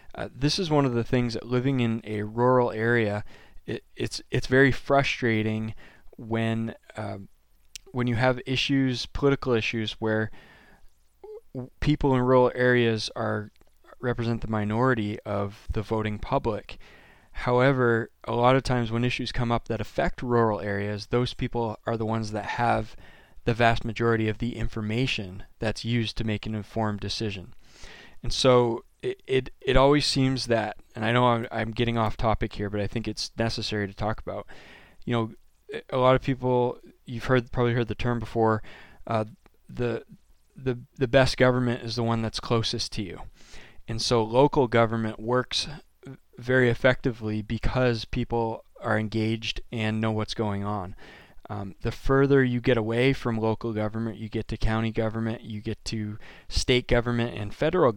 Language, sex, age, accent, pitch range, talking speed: English, male, 20-39, American, 110-125 Hz, 165 wpm